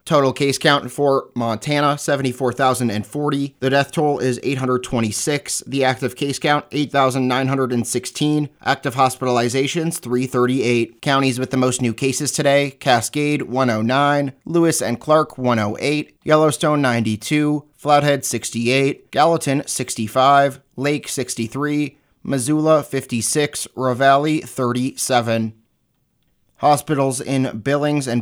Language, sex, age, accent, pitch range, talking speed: English, male, 30-49, American, 125-150 Hz, 100 wpm